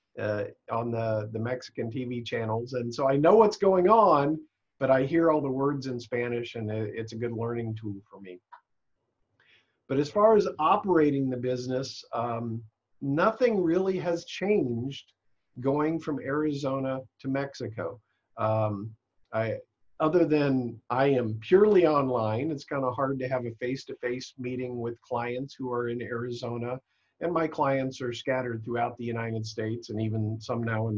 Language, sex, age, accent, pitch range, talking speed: English, male, 50-69, American, 115-140 Hz, 165 wpm